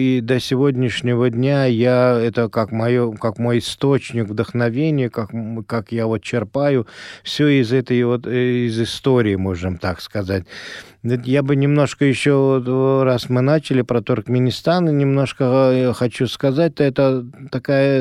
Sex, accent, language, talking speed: male, native, Russian, 125 wpm